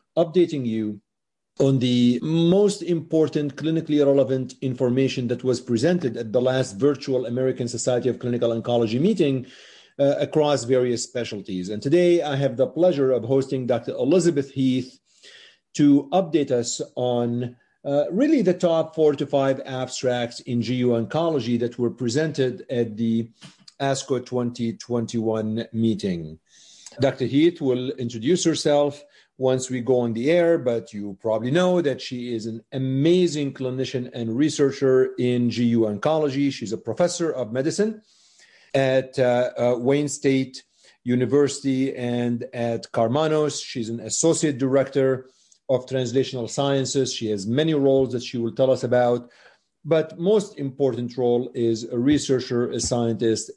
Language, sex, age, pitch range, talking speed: English, male, 50-69, 120-145 Hz, 140 wpm